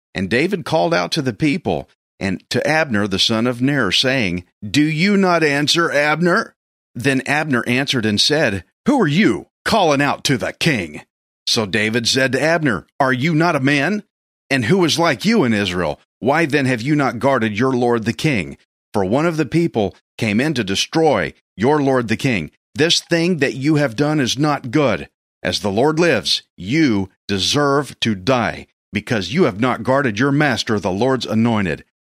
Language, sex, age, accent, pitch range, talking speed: English, male, 40-59, American, 105-145 Hz, 185 wpm